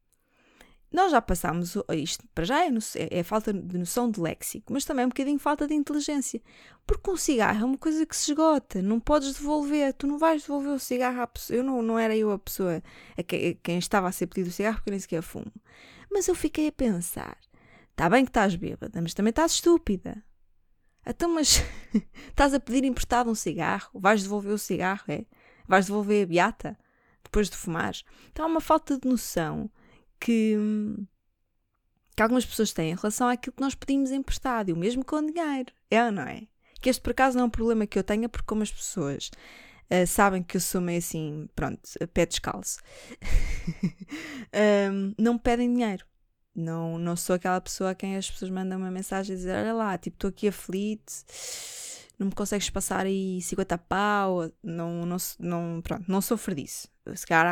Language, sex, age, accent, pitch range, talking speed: Portuguese, female, 20-39, Brazilian, 185-255 Hz, 205 wpm